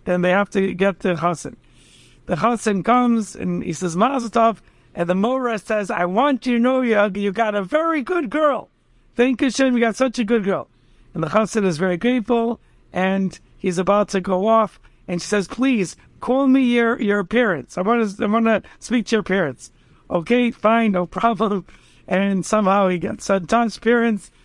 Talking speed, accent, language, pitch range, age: 195 wpm, American, English, 185-235 Hz, 60-79